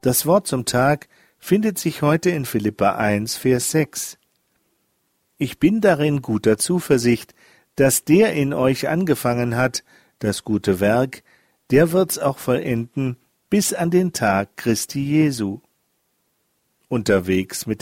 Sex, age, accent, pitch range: male, 50-69, German, 115-160 Hz